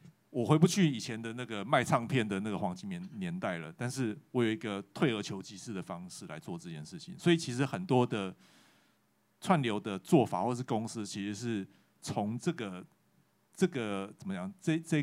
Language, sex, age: Chinese, male, 30-49